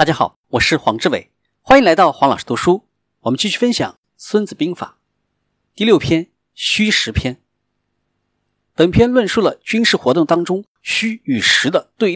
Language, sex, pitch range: Chinese, male, 165-245 Hz